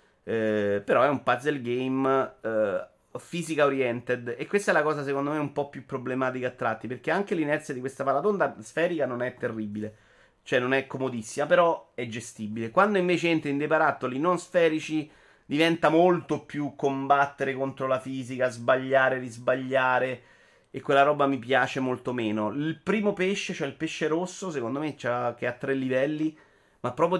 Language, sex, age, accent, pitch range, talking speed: Italian, male, 30-49, native, 120-155 Hz, 175 wpm